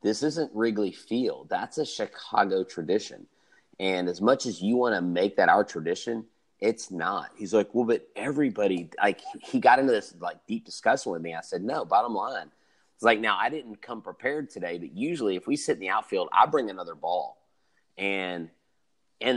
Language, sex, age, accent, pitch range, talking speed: English, male, 30-49, American, 95-145 Hz, 195 wpm